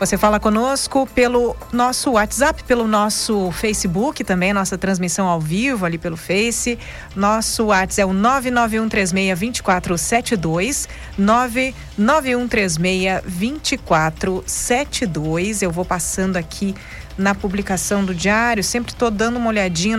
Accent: Brazilian